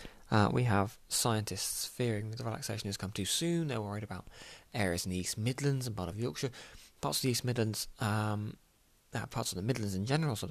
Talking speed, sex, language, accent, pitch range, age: 215 wpm, male, English, British, 100-125 Hz, 20-39